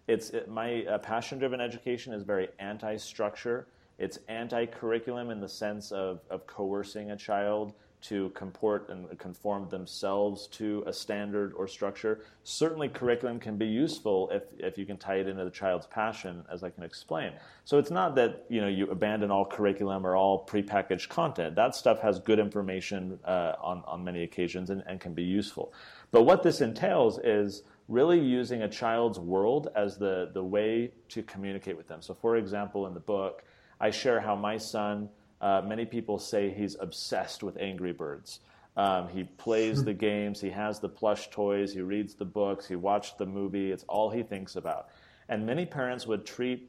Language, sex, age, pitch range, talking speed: English, male, 30-49, 100-110 Hz, 185 wpm